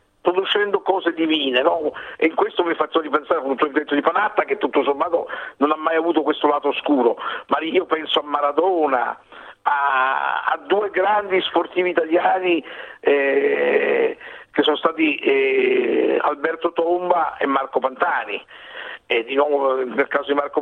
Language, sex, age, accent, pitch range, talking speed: Italian, male, 50-69, native, 135-190 Hz, 155 wpm